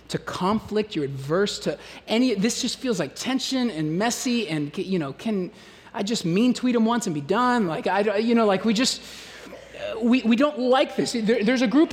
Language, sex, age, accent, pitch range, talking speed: English, male, 30-49, American, 175-235 Hz, 210 wpm